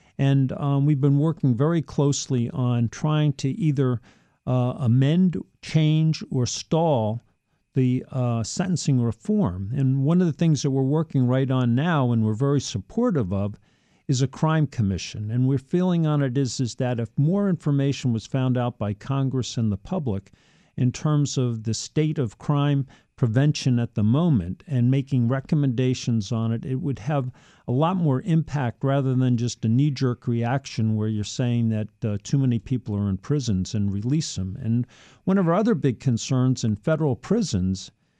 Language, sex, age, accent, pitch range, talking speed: English, male, 50-69, American, 120-150 Hz, 175 wpm